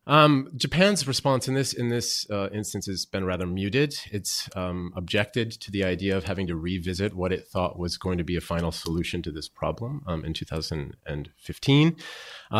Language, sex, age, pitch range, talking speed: English, male, 30-49, 85-105 Hz, 185 wpm